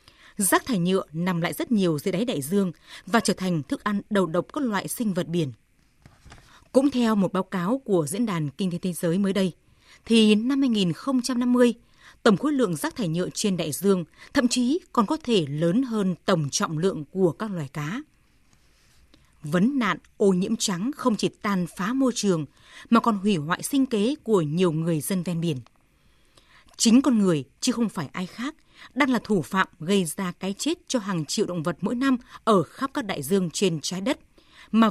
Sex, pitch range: female, 170-235 Hz